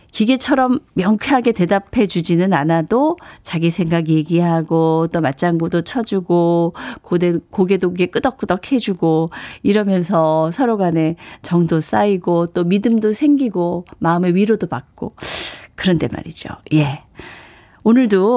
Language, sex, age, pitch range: Korean, female, 40-59, 170-255 Hz